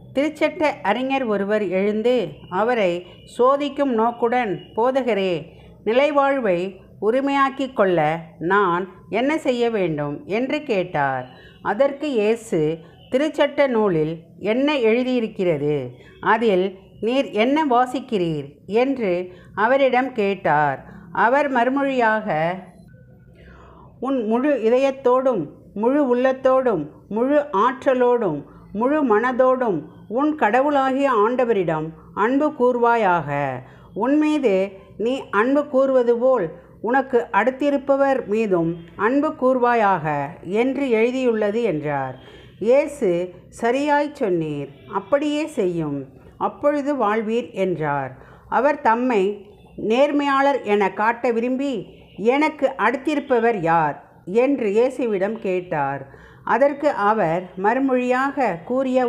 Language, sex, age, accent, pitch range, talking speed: Tamil, female, 50-69, native, 180-265 Hz, 85 wpm